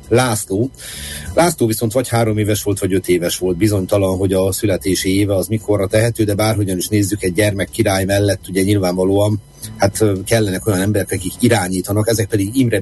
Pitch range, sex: 95-115 Hz, male